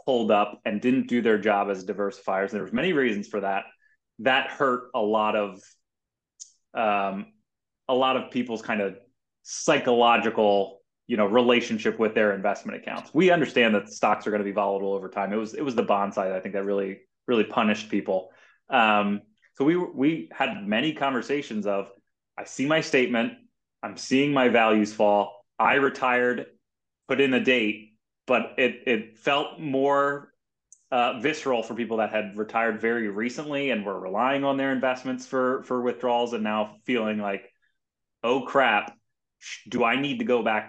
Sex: male